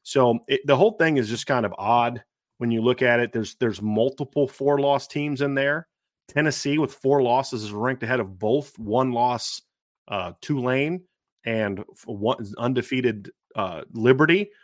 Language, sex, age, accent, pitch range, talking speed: English, male, 30-49, American, 115-140 Hz, 170 wpm